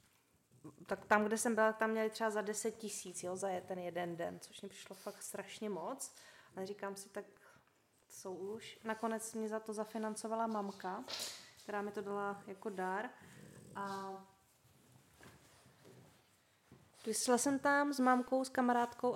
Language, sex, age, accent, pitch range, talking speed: Czech, female, 20-39, native, 200-230 Hz, 145 wpm